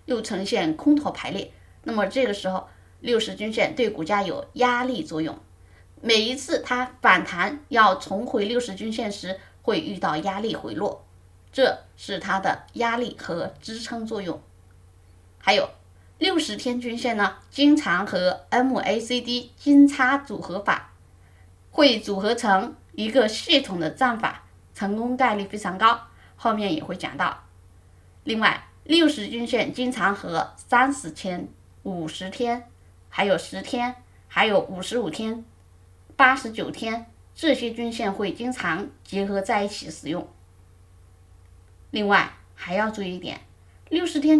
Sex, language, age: female, Chinese, 20-39